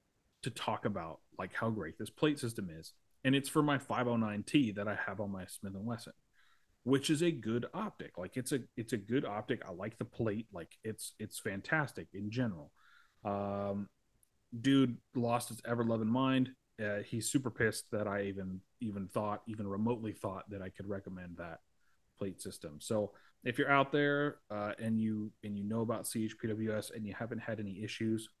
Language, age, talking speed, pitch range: English, 30-49, 190 wpm, 100-120 Hz